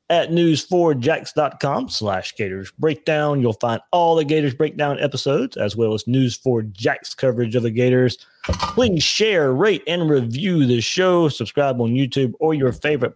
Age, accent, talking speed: 30-49, American, 160 wpm